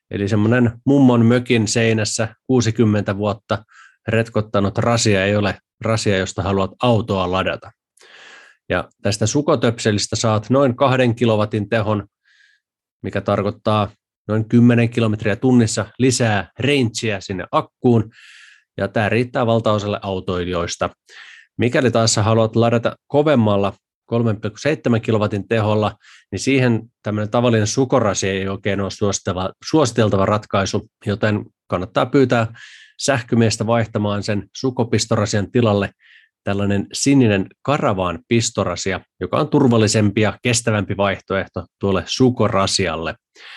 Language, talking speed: Finnish, 105 wpm